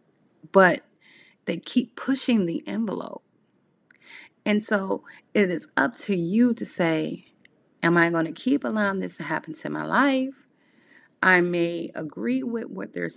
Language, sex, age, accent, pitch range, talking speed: English, female, 30-49, American, 185-280 Hz, 150 wpm